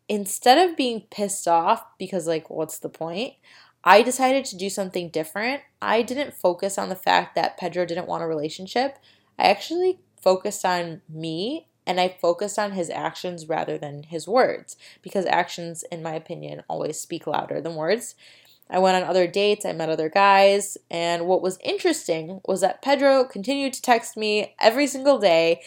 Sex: female